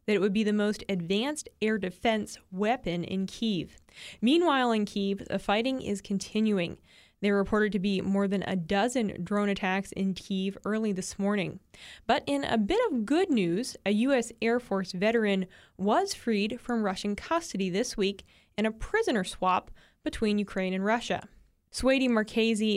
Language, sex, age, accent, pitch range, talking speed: English, female, 20-39, American, 195-230 Hz, 170 wpm